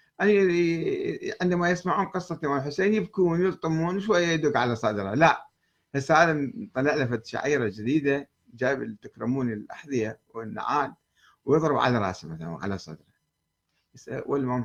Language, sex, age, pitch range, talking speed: Arabic, male, 50-69, 110-165 Hz, 115 wpm